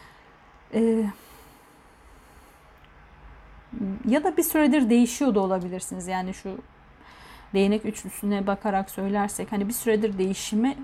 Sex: female